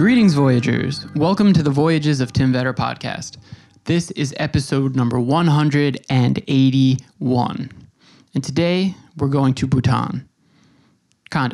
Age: 20-39